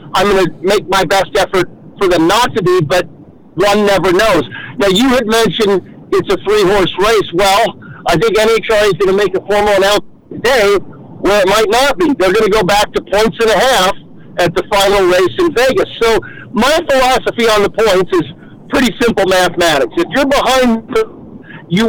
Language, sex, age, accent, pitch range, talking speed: English, male, 50-69, American, 195-255 Hz, 185 wpm